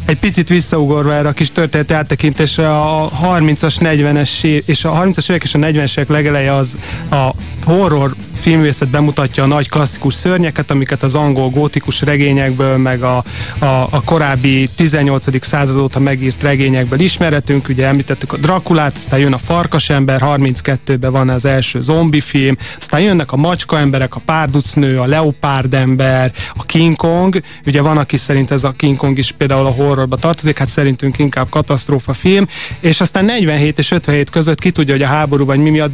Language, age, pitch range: Hungarian, 30-49, 135-155 Hz